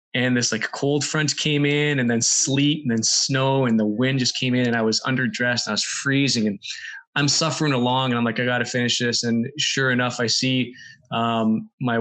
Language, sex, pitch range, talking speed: English, male, 115-135 Hz, 230 wpm